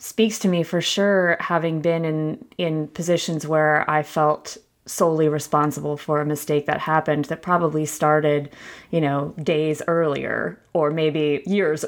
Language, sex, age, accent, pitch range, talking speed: English, female, 20-39, American, 150-175 Hz, 150 wpm